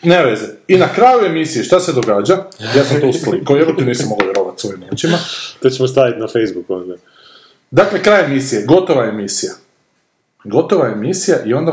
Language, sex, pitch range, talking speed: Croatian, male, 130-185 Hz, 170 wpm